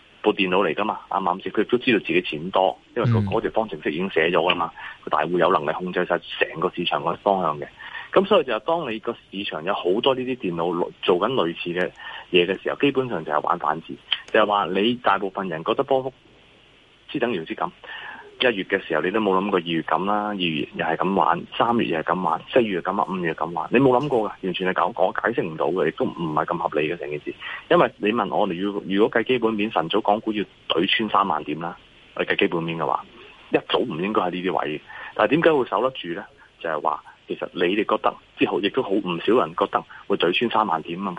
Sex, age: male, 30-49